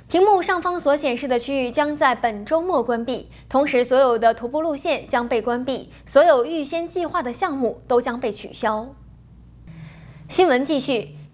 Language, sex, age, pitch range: Chinese, female, 20-39, 245-325 Hz